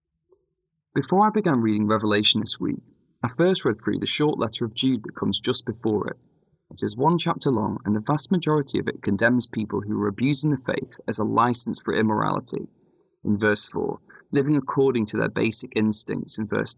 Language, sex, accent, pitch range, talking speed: English, male, British, 105-135 Hz, 195 wpm